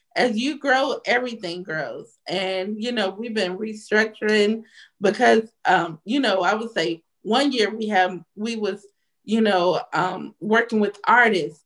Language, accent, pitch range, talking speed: English, American, 195-250 Hz, 155 wpm